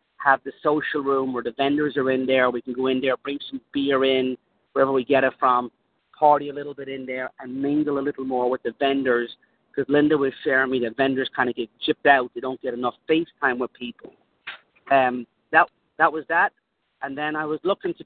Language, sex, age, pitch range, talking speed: English, male, 40-59, 130-155 Hz, 225 wpm